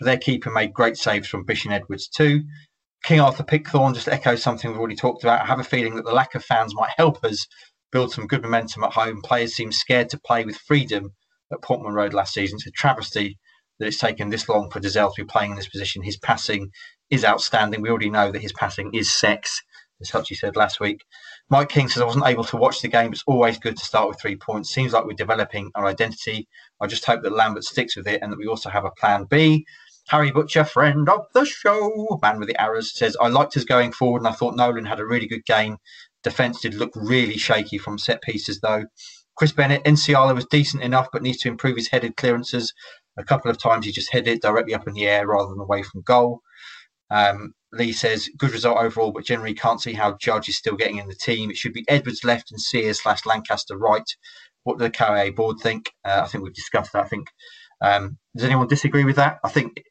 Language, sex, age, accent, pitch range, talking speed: English, male, 30-49, British, 105-135 Hz, 235 wpm